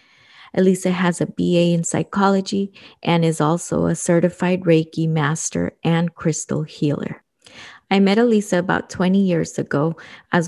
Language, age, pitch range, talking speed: English, 30-49, 160-190 Hz, 135 wpm